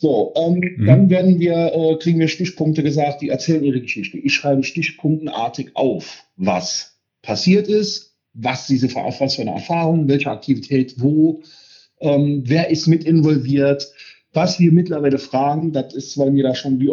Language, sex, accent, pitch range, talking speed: German, male, German, 130-160 Hz, 165 wpm